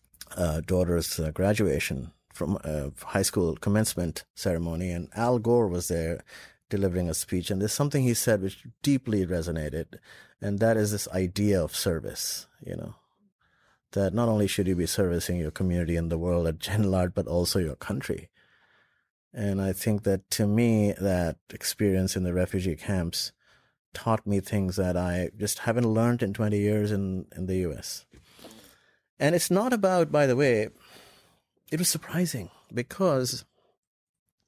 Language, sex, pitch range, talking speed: English, male, 90-115 Hz, 160 wpm